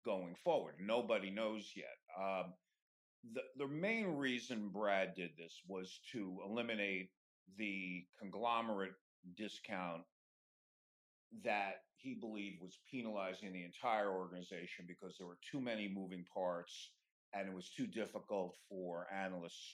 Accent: American